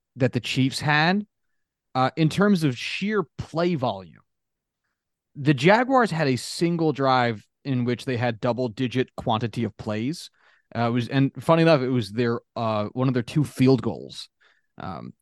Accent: American